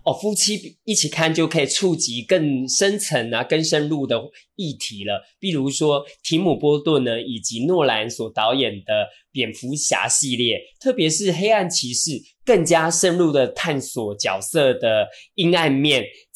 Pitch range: 115-170 Hz